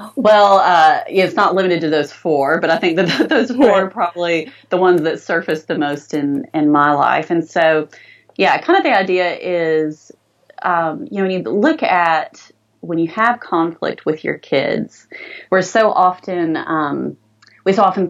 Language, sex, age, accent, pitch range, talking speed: English, female, 30-49, American, 155-195 Hz, 180 wpm